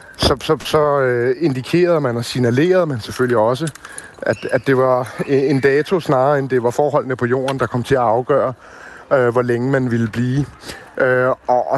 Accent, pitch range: native, 120-145 Hz